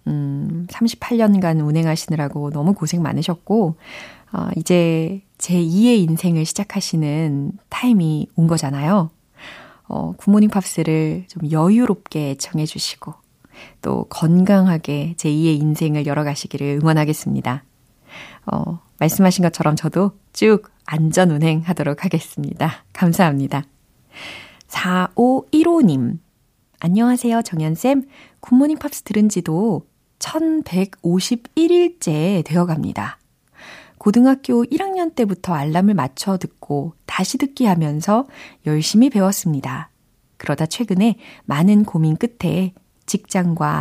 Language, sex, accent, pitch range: Korean, female, native, 155-215 Hz